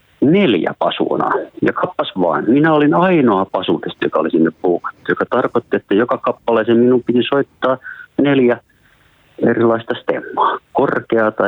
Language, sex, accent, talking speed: Finnish, male, native, 125 wpm